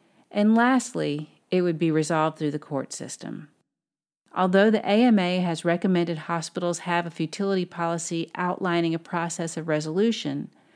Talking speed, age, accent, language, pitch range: 140 wpm, 40-59, American, English, 165-205 Hz